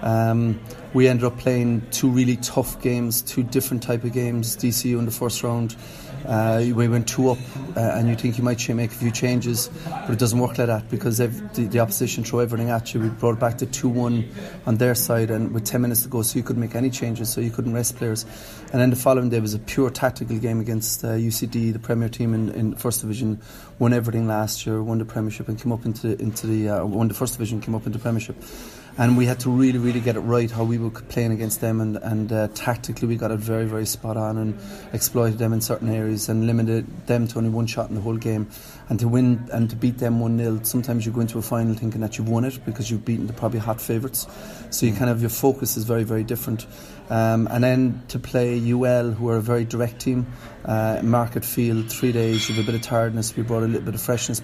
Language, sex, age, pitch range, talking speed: English, male, 30-49, 110-125 Hz, 245 wpm